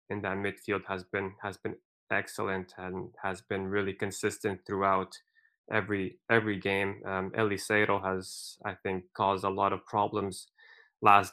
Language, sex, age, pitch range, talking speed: Finnish, male, 20-39, 95-110 Hz, 150 wpm